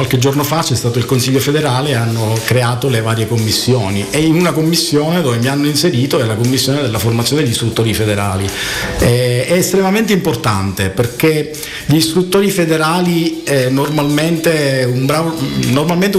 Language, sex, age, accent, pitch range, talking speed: Italian, male, 50-69, native, 115-150 Hz, 145 wpm